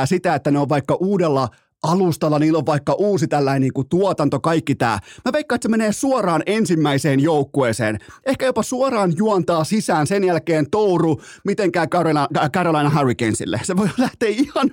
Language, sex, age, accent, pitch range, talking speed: Finnish, male, 30-49, native, 135-180 Hz, 165 wpm